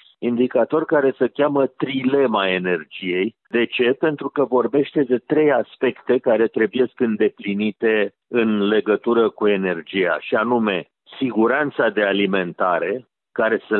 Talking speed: 125 wpm